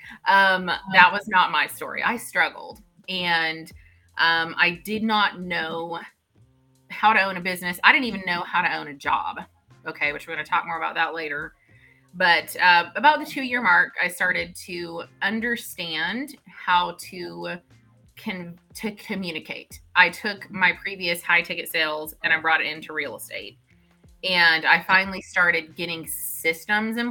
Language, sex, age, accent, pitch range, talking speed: English, female, 30-49, American, 160-195 Hz, 165 wpm